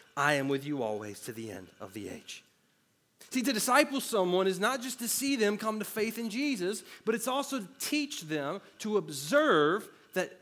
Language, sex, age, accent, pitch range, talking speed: English, male, 40-59, American, 150-220 Hz, 200 wpm